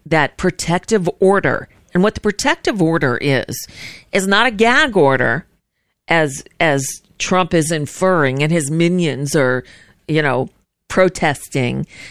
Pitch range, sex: 155-205 Hz, female